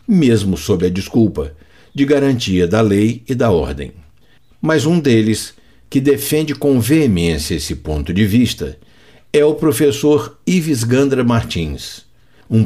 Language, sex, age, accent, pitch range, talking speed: Portuguese, male, 60-79, Brazilian, 95-145 Hz, 140 wpm